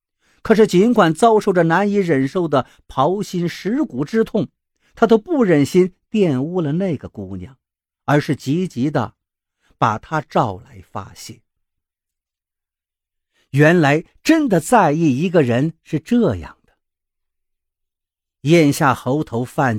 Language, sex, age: Chinese, male, 50-69